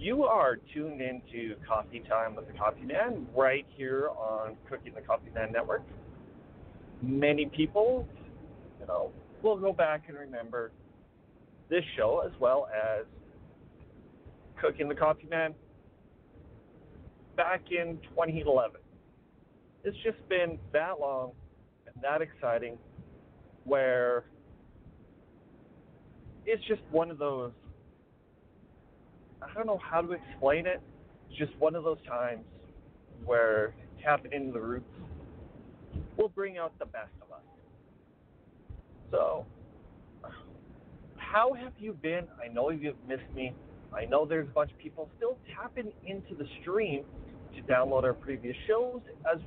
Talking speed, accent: 125 wpm, American